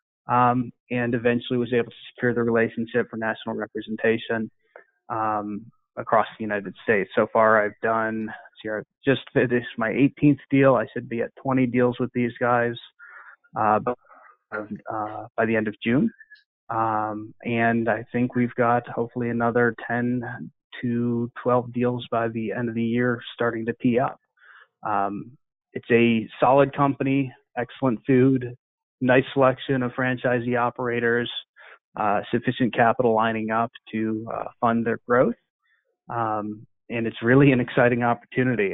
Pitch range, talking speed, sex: 115-130 Hz, 145 wpm, male